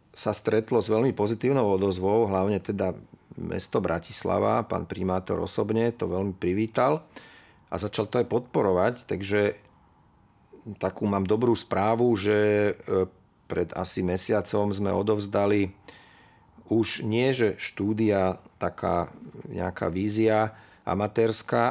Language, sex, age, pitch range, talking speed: Slovak, male, 40-59, 100-115 Hz, 110 wpm